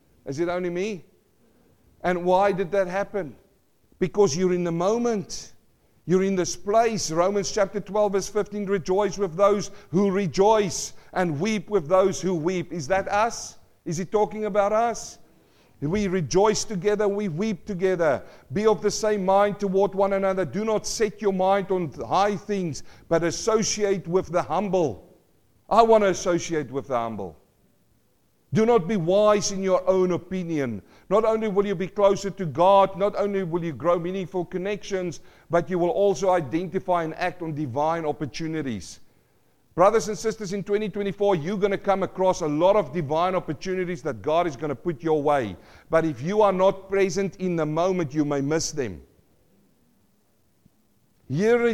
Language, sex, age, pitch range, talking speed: English, male, 50-69, 170-205 Hz, 170 wpm